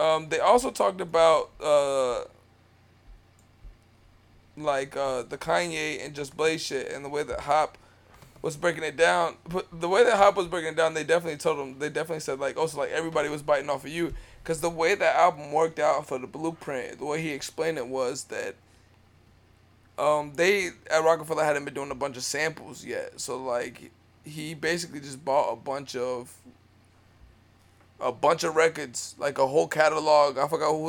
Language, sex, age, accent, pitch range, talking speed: English, male, 20-39, American, 130-160 Hz, 190 wpm